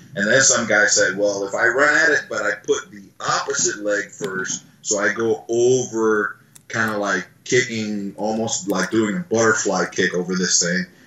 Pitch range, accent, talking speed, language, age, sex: 100-115 Hz, American, 190 wpm, English, 30-49, male